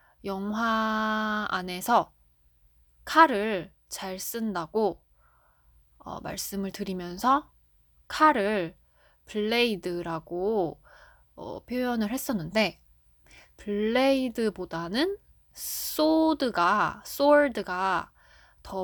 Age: 20-39